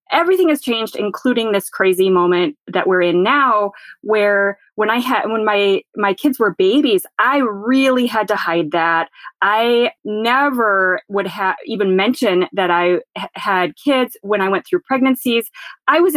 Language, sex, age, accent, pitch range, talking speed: English, female, 30-49, American, 200-265 Hz, 165 wpm